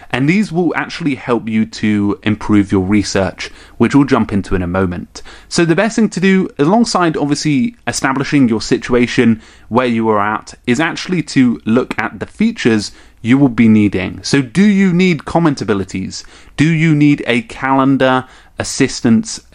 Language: English